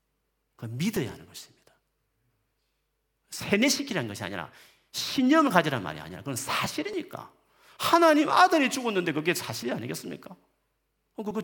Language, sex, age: Korean, male, 40-59